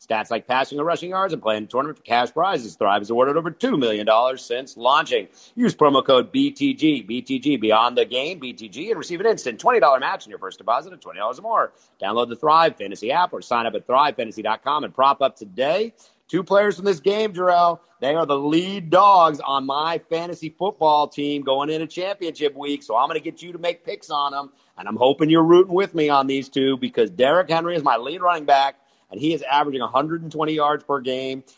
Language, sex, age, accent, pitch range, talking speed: English, male, 40-59, American, 130-170 Hz, 215 wpm